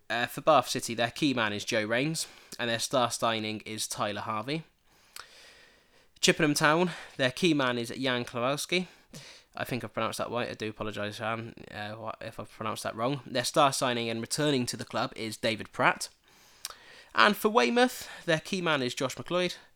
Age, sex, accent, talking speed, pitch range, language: 20-39, male, British, 180 wpm, 120-165 Hz, English